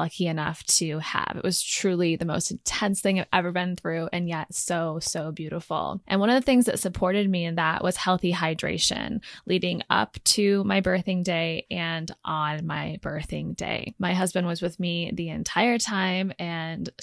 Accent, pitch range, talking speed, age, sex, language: American, 165-195 Hz, 185 wpm, 20-39, female, English